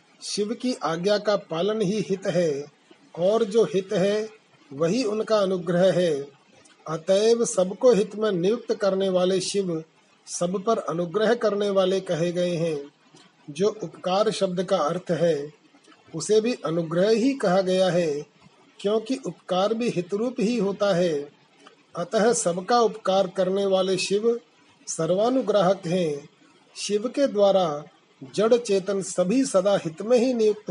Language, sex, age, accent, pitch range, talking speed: Hindi, male, 40-59, native, 175-215 Hz, 140 wpm